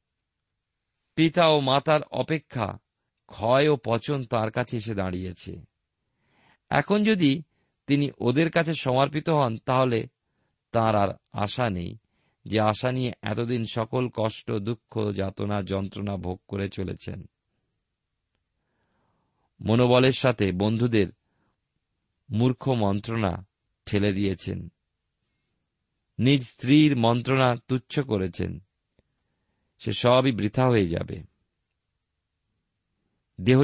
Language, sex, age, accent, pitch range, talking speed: Bengali, male, 50-69, native, 100-130 Hz, 95 wpm